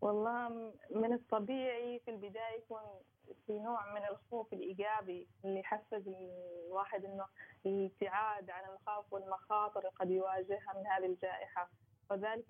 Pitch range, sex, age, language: 190-215 Hz, female, 20-39, Arabic